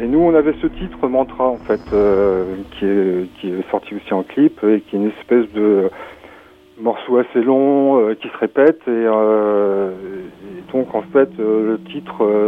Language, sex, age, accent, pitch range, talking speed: French, male, 40-59, French, 105-140 Hz, 190 wpm